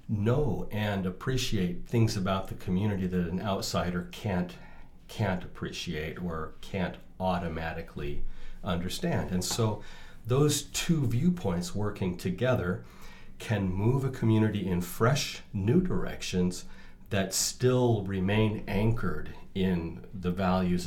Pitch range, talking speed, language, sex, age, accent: 90-115 Hz, 110 wpm, English, male, 40-59, American